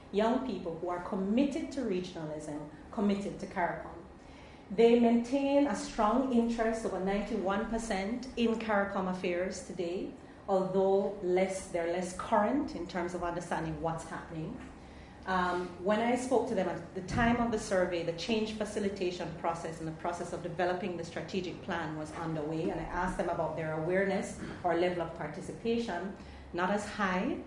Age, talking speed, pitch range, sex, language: 40-59, 155 wpm, 165-205 Hz, female, English